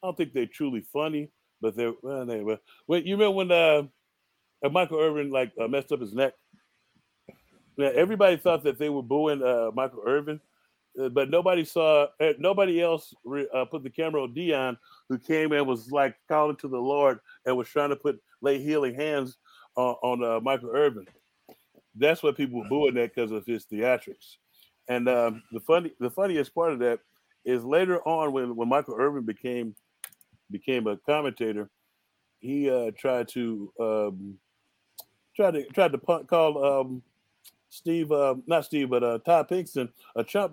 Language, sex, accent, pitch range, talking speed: English, male, American, 125-165 Hz, 180 wpm